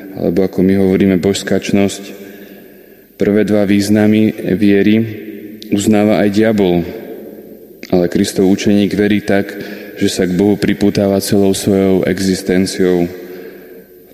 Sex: male